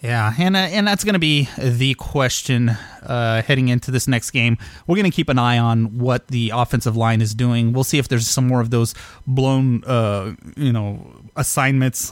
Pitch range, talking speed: 115-140 Hz, 210 wpm